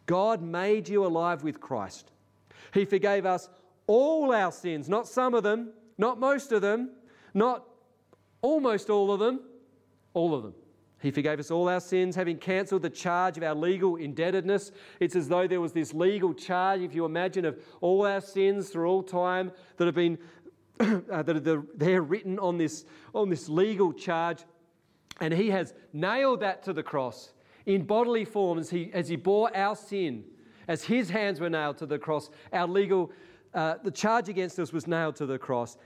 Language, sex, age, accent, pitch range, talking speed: English, male, 40-59, Australian, 150-195 Hz, 185 wpm